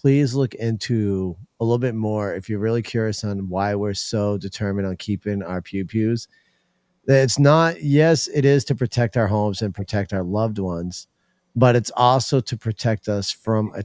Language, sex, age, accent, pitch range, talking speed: English, male, 40-59, American, 95-110 Hz, 185 wpm